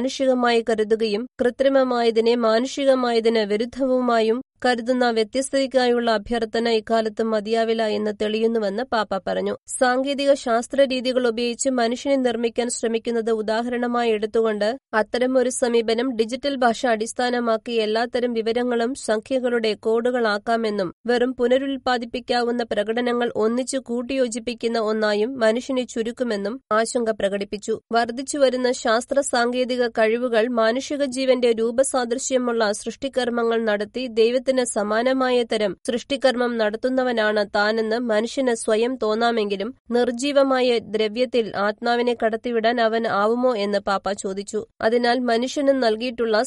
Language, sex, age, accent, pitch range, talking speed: Malayalam, female, 20-39, native, 220-250 Hz, 85 wpm